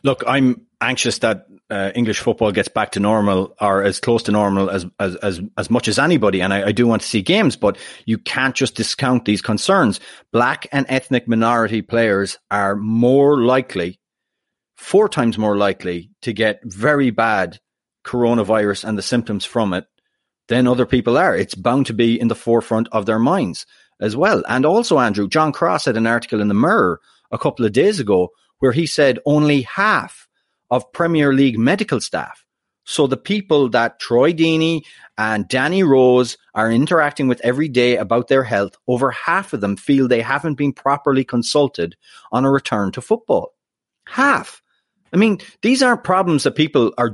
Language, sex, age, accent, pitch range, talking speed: English, male, 30-49, Irish, 110-150 Hz, 180 wpm